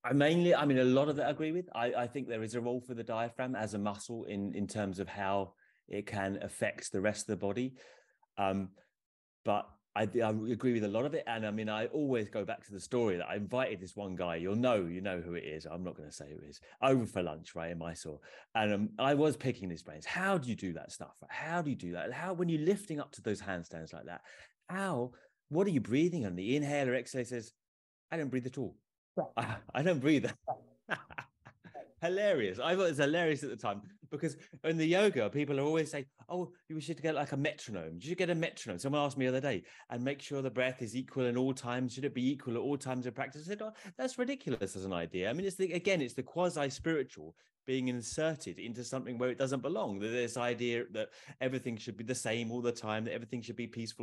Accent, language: British, English